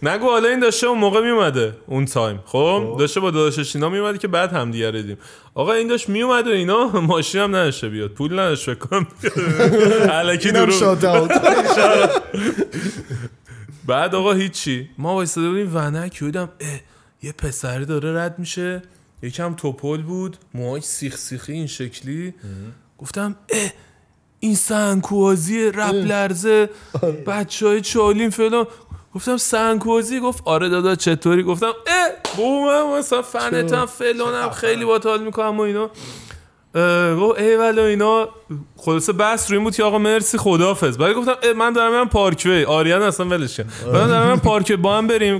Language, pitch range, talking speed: Persian, 145-215 Hz, 145 wpm